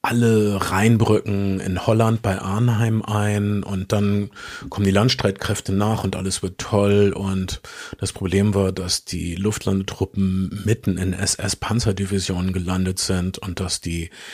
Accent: German